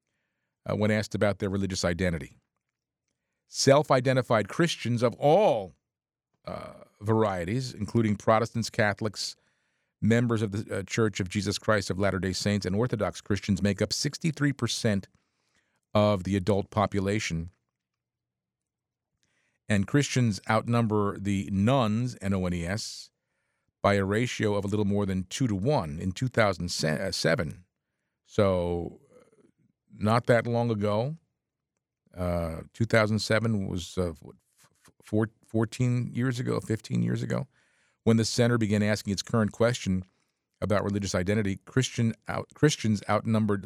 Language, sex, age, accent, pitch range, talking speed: English, male, 40-59, American, 95-115 Hz, 120 wpm